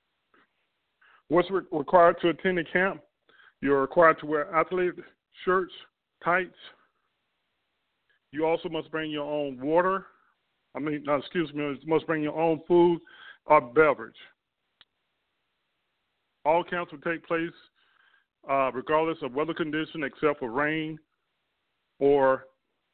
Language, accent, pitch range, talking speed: English, American, 145-170 Hz, 120 wpm